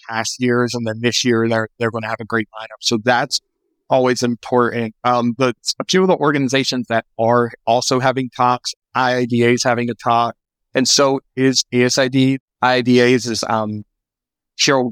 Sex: male